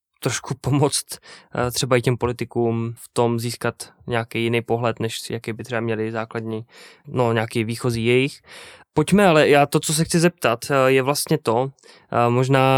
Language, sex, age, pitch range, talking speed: Czech, male, 20-39, 120-145 Hz, 160 wpm